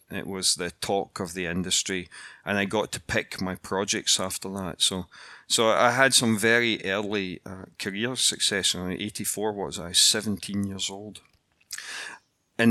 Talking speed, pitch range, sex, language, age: 160 wpm, 95-120 Hz, male, English, 40-59